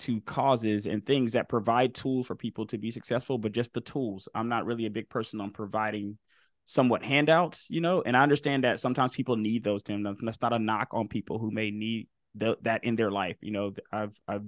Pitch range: 110-135 Hz